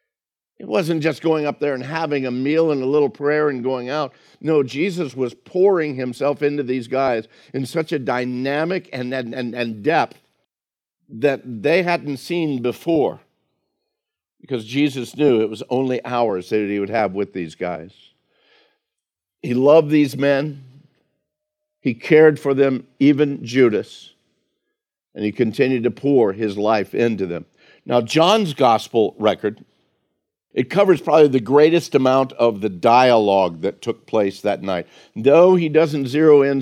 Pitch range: 120-150 Hz